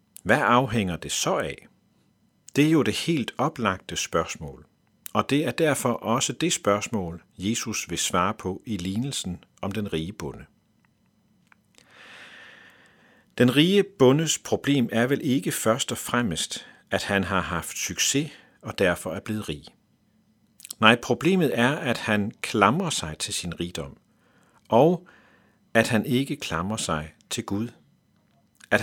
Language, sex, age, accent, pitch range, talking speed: Danish, male, 50-69, native, 95-130 Hz, 140 wpm